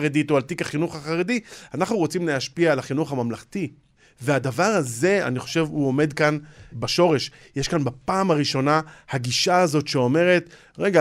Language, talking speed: Hebrew, 145 wpm